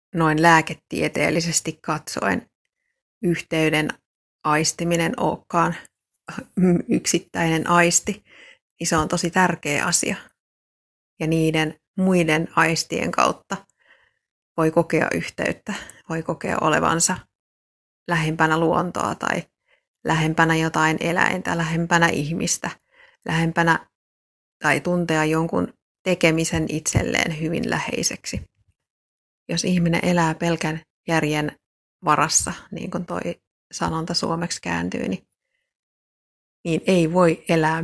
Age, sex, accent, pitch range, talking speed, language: 30-49, female, native, 160-180 Hz, 90 wpm, Finnish